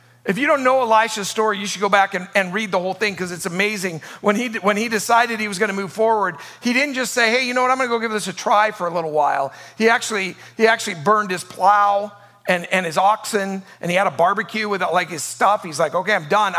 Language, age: English, 50-69